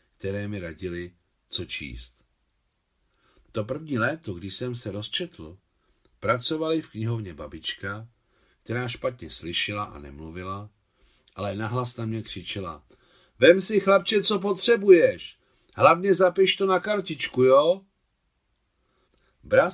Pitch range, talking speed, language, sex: 95-145 Hz, 115 wpm, Czech, male